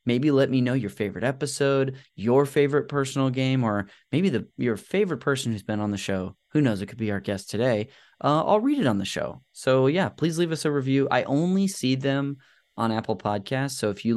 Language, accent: English, American